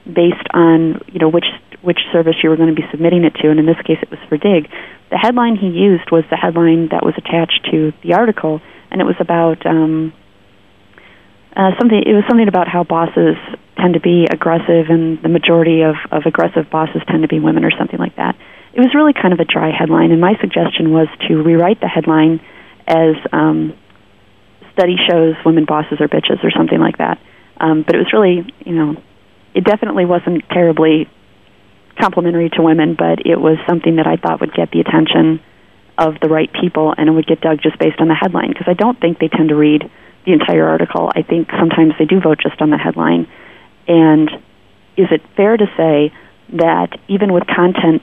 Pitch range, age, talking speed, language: 155-170 Hz, 30-49, 205 wpm, English